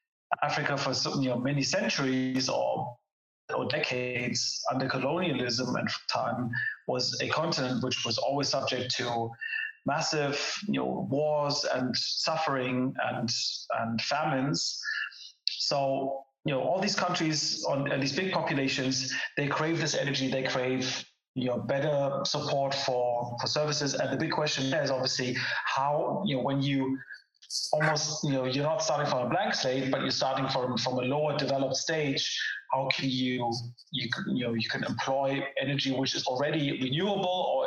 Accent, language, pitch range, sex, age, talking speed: German, English, 130-155 Hz, male, 30-49, 160 wpm